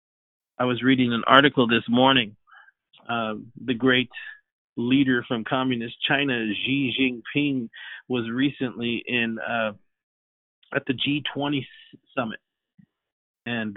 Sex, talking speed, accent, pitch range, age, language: male, 110 wpm, American, 120-165 Hz, 40-59, English